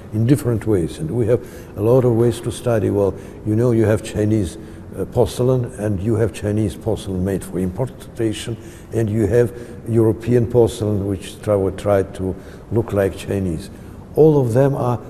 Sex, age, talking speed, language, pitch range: male, 60-79, 175 wpm, English, 95-115 Hz